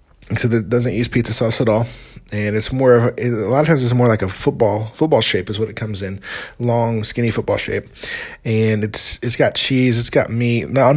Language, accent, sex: English, American, male